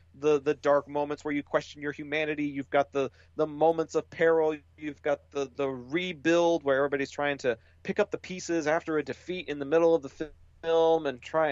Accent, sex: American, male